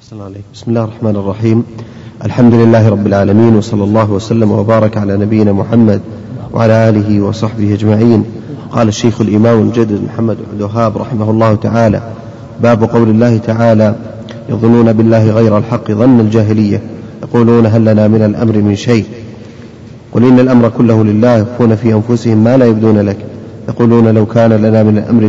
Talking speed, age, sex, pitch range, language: 150 wpm, 30-49, male, 110-120 Hz, Arabic